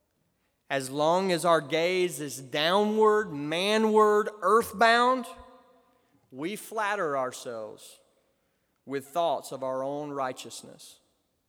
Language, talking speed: English, 95 wpm